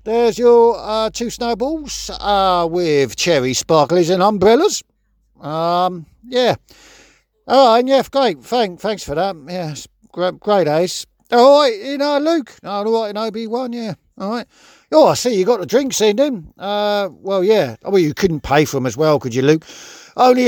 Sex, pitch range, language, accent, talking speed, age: male, 165-240 Hz, English, British, 190 wpm, 50-69